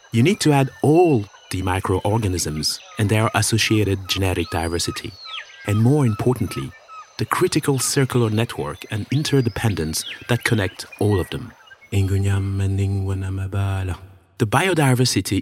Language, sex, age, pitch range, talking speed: English, male, 30-49, 95-125 Hz, 110 wpm